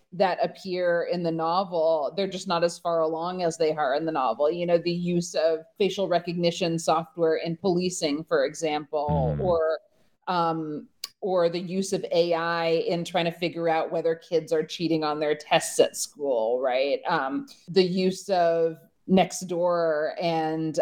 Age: 30-49